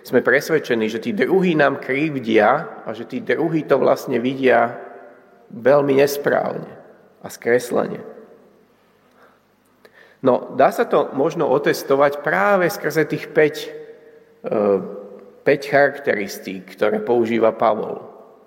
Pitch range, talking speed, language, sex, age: 115-150 Hz, 105 wpm, Slovak, male, 40-59